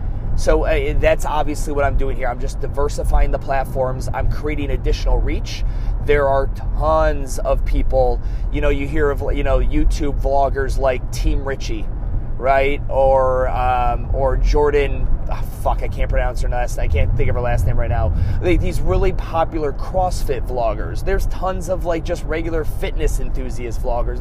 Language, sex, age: English, male, 30-49